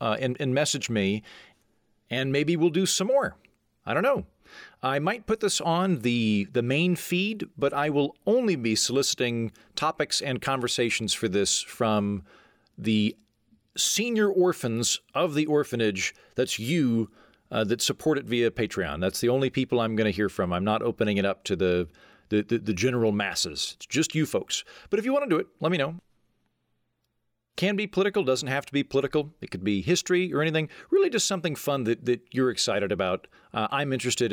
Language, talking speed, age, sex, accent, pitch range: English, 190 wpm, 40-59, male, American, 110-160 Hz